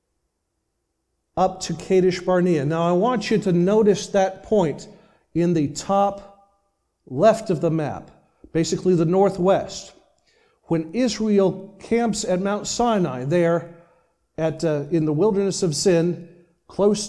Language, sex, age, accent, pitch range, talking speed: English, male, 40-59, American, 165-220 Hz, 130 wpm